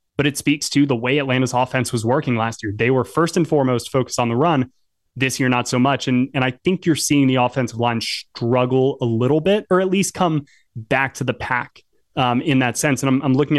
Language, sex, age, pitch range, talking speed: English, male, 20-39, 125-150 Hz, 245 wpm